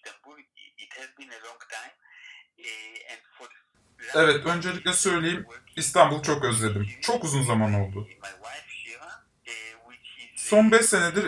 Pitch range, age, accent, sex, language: 125-195 Hz, 20-39, native, male, Turkish